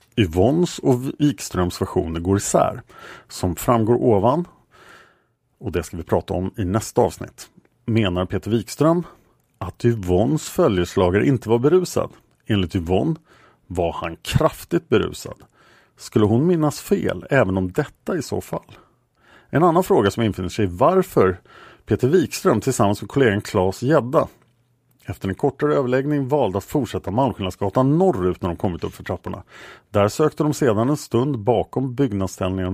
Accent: Norwegian